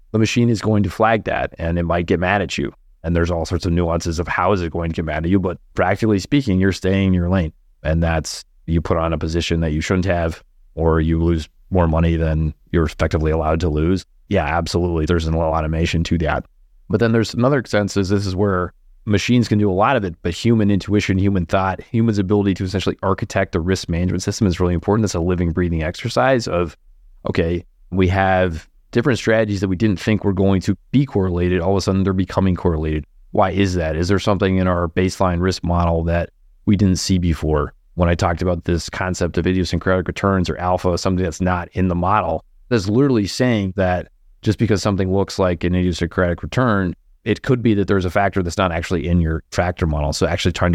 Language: English